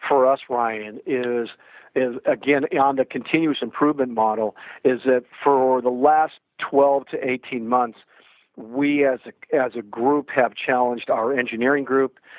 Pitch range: 120-140 Hz